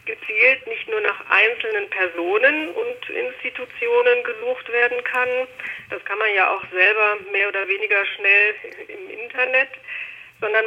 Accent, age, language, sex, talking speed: German, 50-69, German, female, 135 wpm